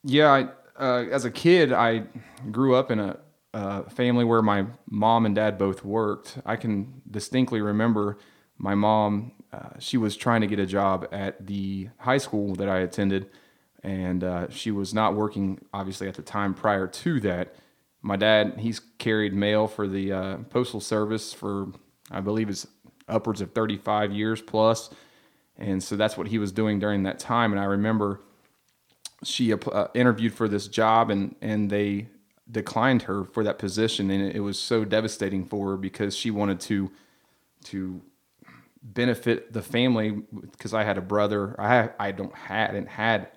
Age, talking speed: 30-49, 175 wpm